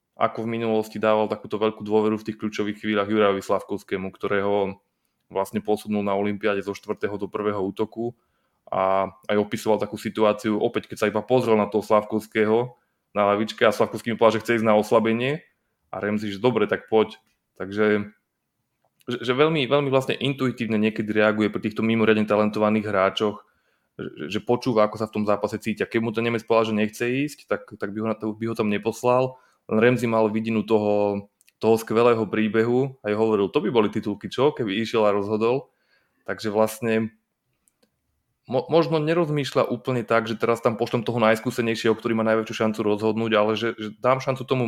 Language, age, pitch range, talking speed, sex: Slovak, 20-39, 105-120 Hz, 175 wpm, male